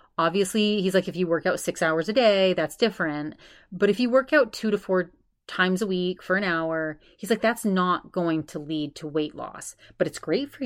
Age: 30-49